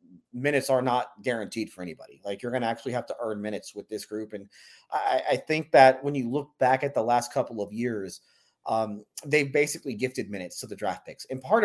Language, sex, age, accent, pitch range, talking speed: English, male, 30-49, American, 115-150 Hz, 225 wpm